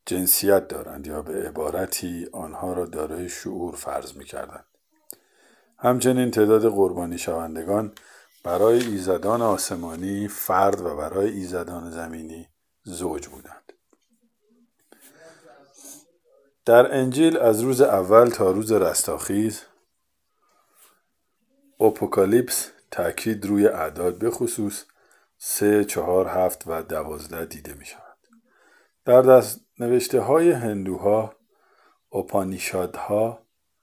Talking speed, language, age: 95 wpm, Persian, 50-69